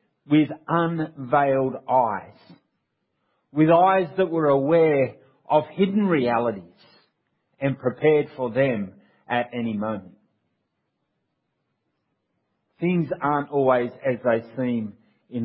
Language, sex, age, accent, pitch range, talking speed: English, male, 40-59, Australian, 130-180 Hz, 95 wpm